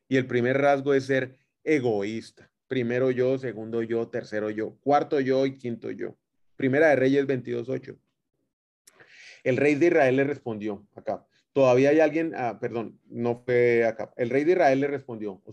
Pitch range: 115-145 Hz